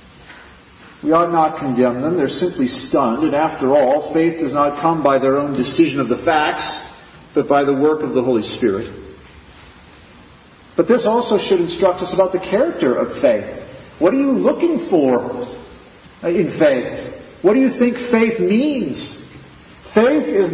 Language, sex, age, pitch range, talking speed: English, male, 40-59, 130-210 Hz, 165 wpm